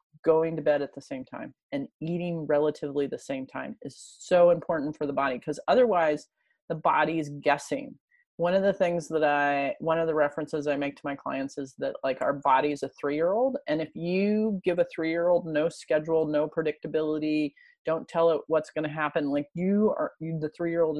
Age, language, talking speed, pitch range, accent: 30-49, English, 200 wpm, 150-185 Hz, American